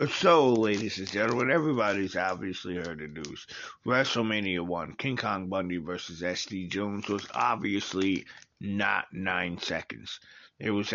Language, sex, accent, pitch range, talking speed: English, male, American, 100-115 Hz, 130 wpm